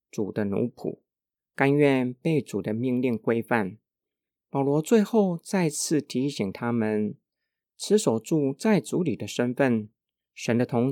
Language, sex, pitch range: Chinese, male, 115-150 Hz